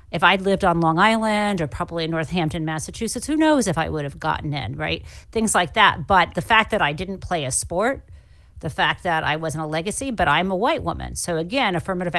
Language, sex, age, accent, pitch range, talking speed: English, female, 40-59, American, 170-240 Hz, 230 wpm